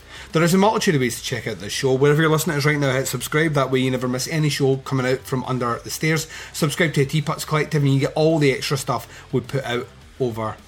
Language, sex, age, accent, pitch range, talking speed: English, male, 30-49, British, 130-160 Hz, 270 wpm